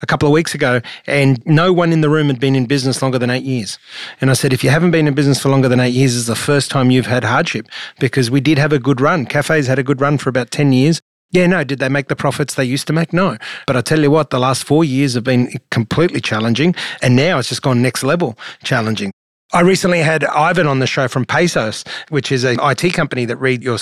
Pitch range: 125-155 Hz